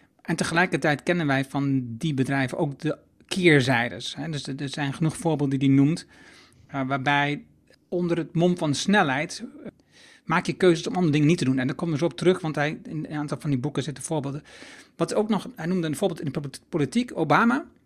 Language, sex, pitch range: Dutch, male, 140-185 Hz